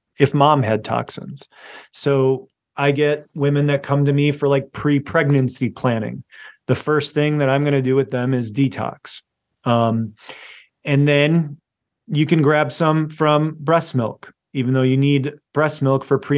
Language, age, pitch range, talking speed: English, 30-49, 130-150 Hz, 170 wpm